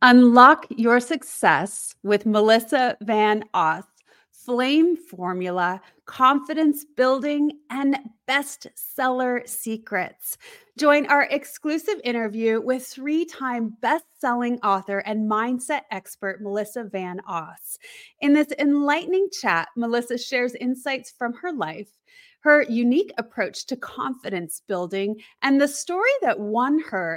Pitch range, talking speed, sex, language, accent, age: 215-295 Hz, 115 wpm, female, English, American, 30-49